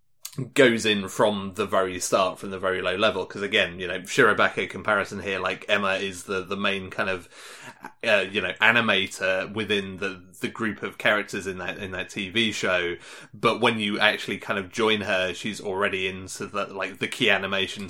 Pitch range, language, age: 95-115 Hz, English, 30-49